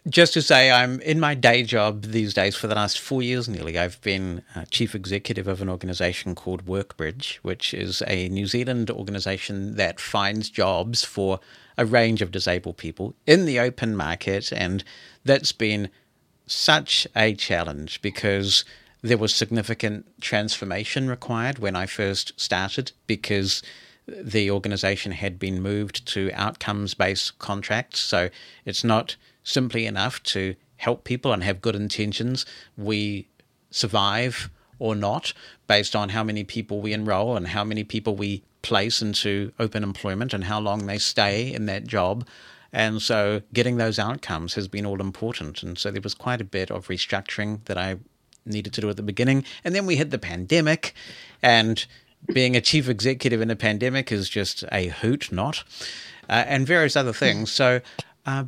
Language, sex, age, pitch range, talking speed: English, male, 50-69, 100-120 Hz, 165 wpm